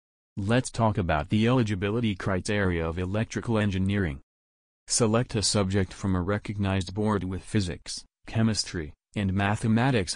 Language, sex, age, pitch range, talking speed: English, male, 40-59, 90-110 Hz, 125 wpm